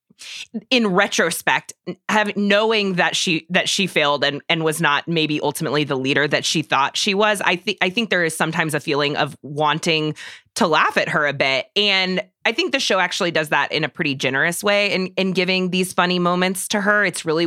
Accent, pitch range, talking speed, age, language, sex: American, 160-205 Hz, 215 wpm, 20-39, English, female